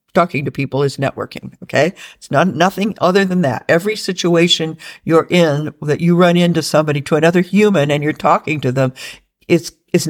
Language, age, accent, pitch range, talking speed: English, 60-79, American, 165-230 Hz, 190 wpm